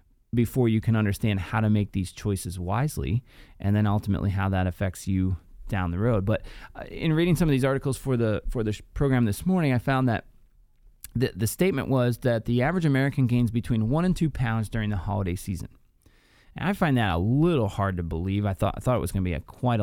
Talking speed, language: 225 wpm, English